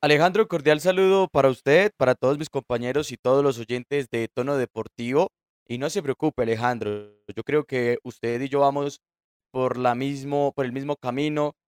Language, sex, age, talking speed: Spanish, male, 20-39, 180 wpm